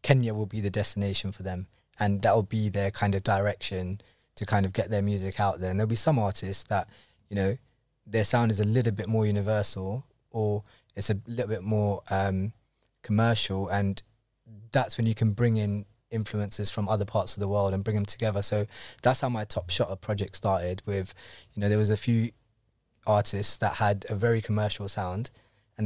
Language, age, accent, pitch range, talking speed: English, 20-39, British, 100-115 Hz, 205 wpm